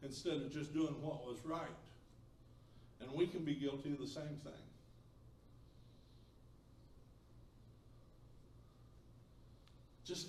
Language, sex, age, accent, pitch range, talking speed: English, male, 60-79, American, 120-150 Hz, 100 wpm